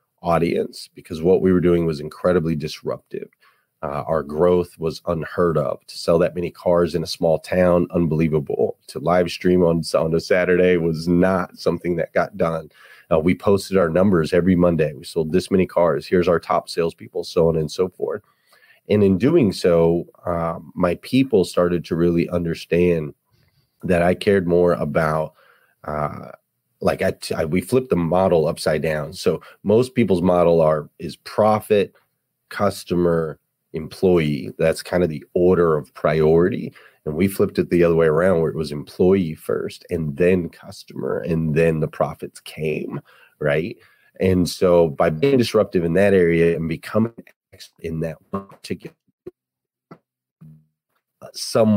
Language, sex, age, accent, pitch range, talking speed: English, male, 30-49, American, 80-90 Hz, 160 wpm